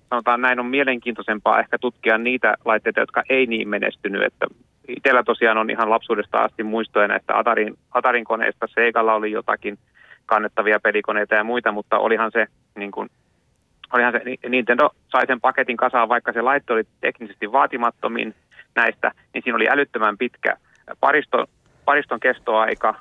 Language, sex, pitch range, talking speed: Finnish, male, 110-125 Hz, 150 wpm